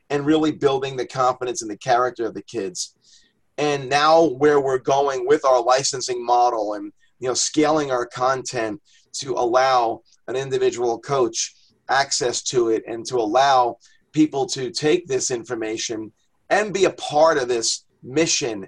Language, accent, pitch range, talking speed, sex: English, American, 130-160 Hz, 155 wpm, male